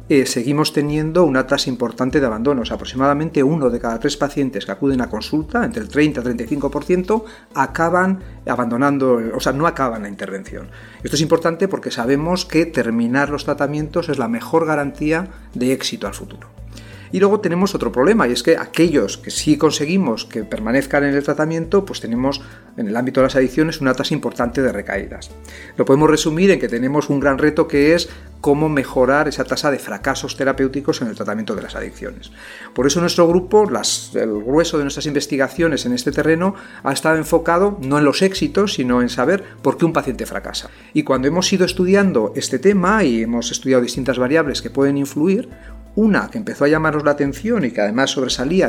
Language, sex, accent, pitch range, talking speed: Spanish, male, Spanish, 125-165 Hz, 195 wpm